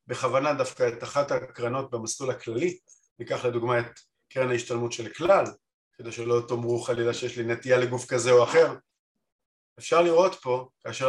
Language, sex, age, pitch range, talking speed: Hebrew, male, 50-69, 120-145 Hz, 150 wpm